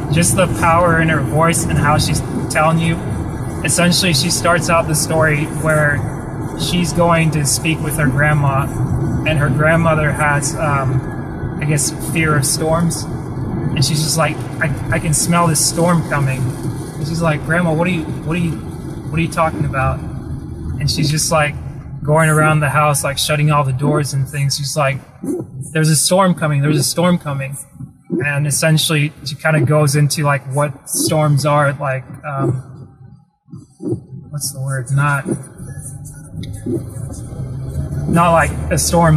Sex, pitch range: male, 140-155 Hz